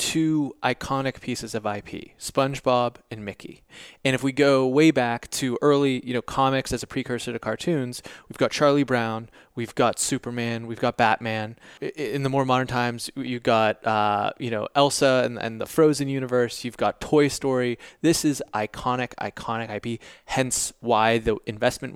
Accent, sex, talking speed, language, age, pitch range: American, male, 170 wpm, English, 20-39, 110-135 Hz